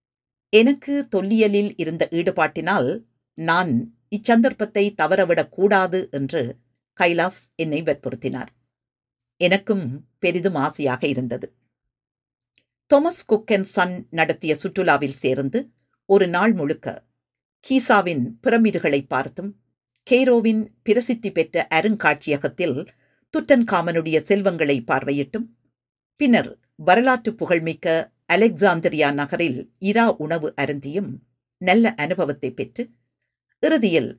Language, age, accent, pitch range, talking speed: Tamil, 50-69, native, 145-210 Hz, 85 wpm